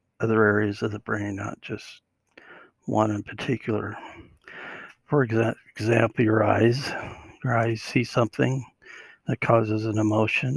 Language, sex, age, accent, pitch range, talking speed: English, male, 60-79, American, 105-120 Hz, 125 wpm